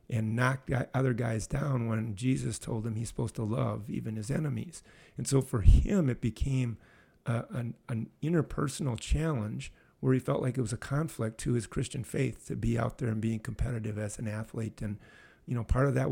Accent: American